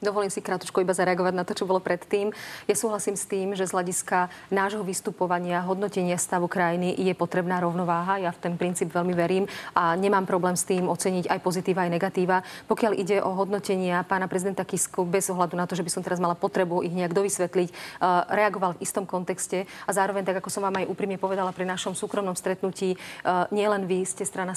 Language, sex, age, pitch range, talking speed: Slovak, female, 30-49, 180-200 Hz, 205 wpm